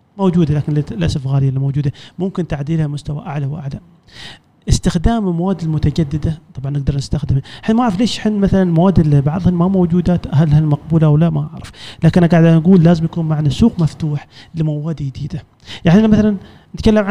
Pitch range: 150-190 Hz